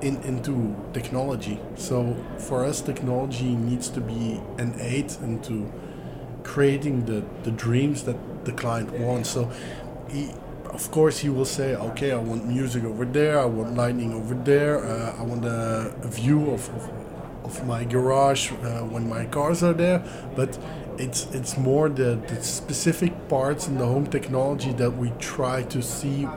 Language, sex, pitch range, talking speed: English, male, 120-140 Hz, 155 wpm